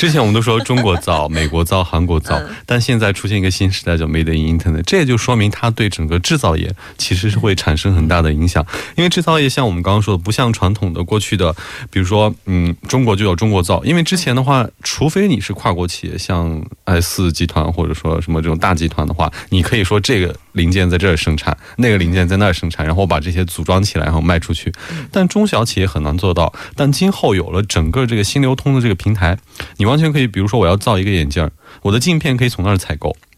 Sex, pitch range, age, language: male, 85-110 Hz, 20-39, Korean